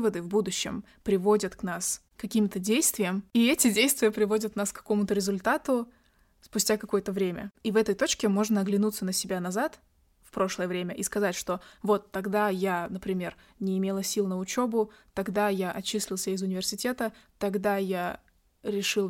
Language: Russian